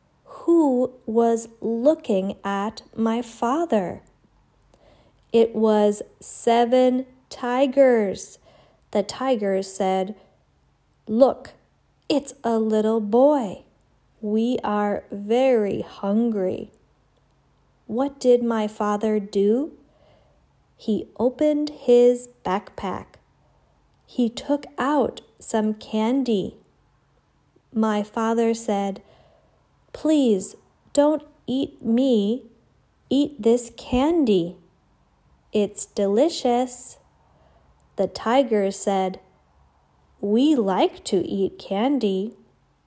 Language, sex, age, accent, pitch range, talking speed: English, female, 40-59, American, 210-260 Hz, 80 wpm